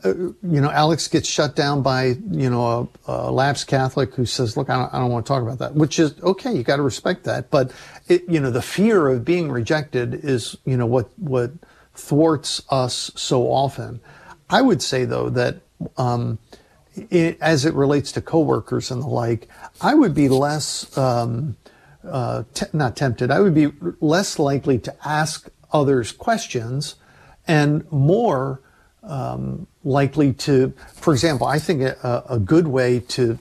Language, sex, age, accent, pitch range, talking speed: English, male, 50-69, American, 130-165 Hz, 175 wpm